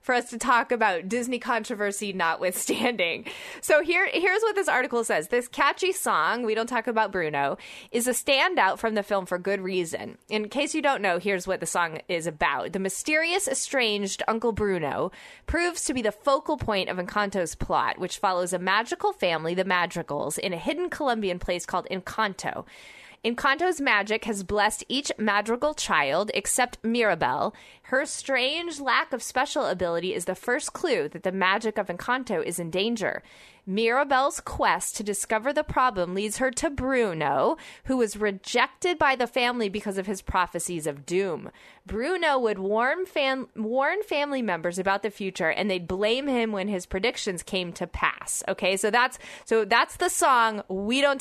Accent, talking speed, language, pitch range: American, 170 wpm, English, 195-275 Hz